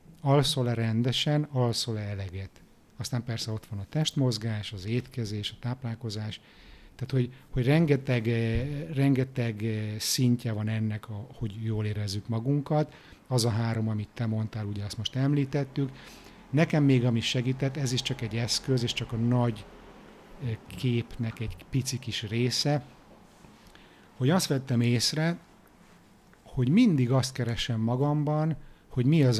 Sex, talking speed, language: male, 135 wpm, Hungarian